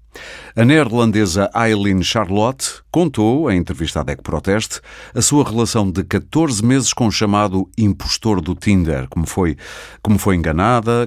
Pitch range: 90-115 Hz